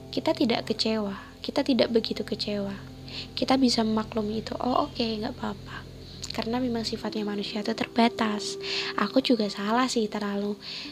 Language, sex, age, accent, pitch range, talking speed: Indonesian, female, 20-39, native, 200-245 Hz, 150 wpm